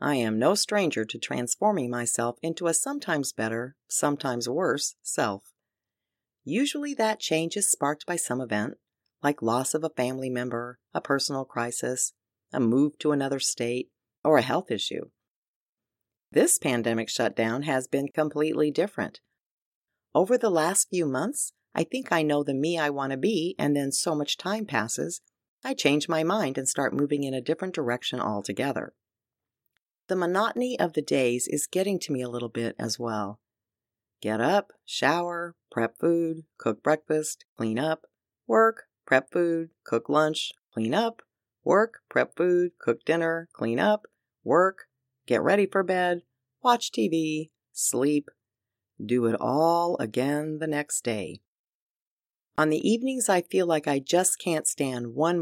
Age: 40-59